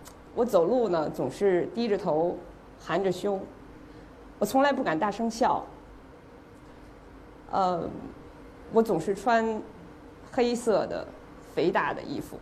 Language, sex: Chinese, female